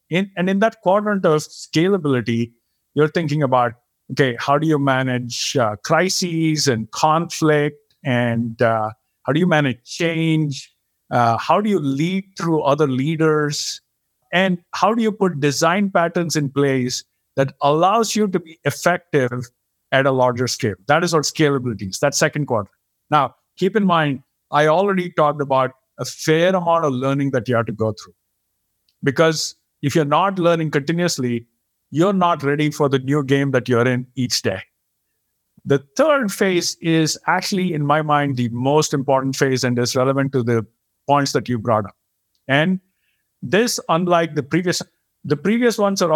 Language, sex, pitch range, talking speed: English, male, 130-175 Hz, 170 wpm